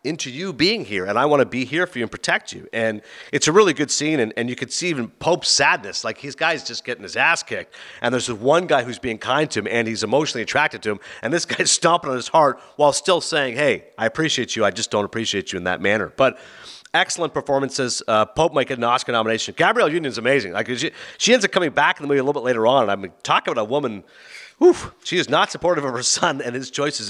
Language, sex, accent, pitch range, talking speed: English, male, American, 115-155 Hz, 270 wpm